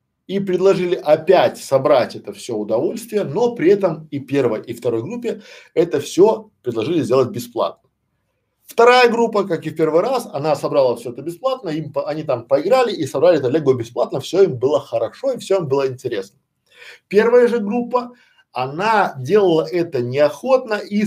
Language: Russian